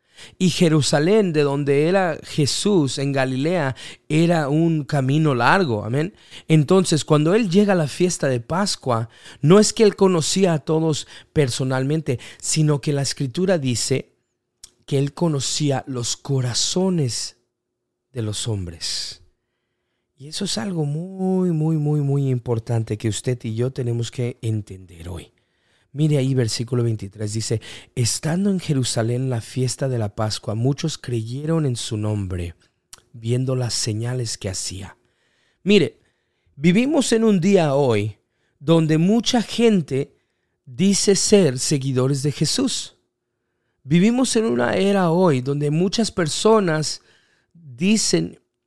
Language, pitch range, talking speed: English, 120-180 Hz, 130 wpm